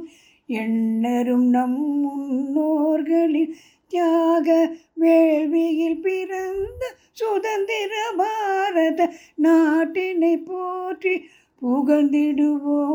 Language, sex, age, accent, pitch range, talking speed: English, female, 60-79, Indian, 250-330 Hz, 55 wpm